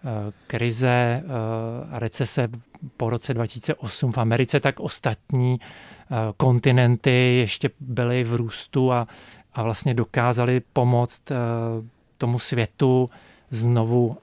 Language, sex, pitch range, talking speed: Czech, male, 120-140 Hz, 95 wpm